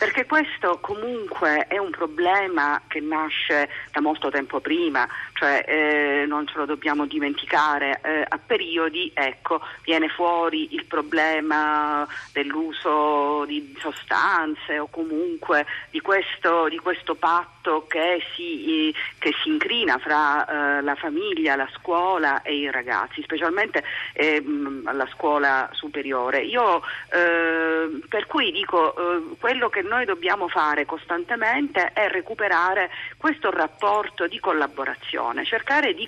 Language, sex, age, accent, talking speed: Italian, female, 40-59, native, 125 wpm